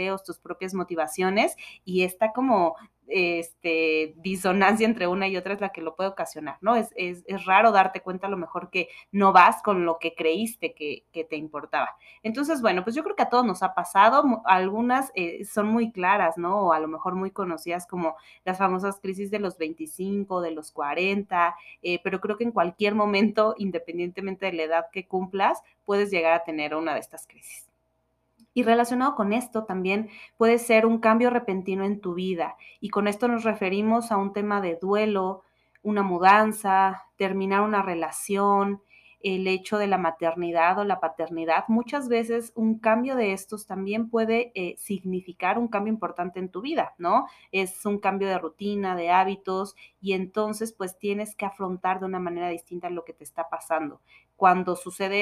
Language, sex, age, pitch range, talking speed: Spanish, female, 30-49, 175-210 Hz, 185 wpm